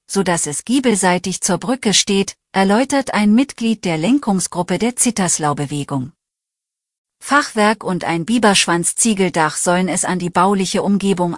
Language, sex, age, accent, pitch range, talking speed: German, female, 40-59, German, 170-225 Hz, 120 wpm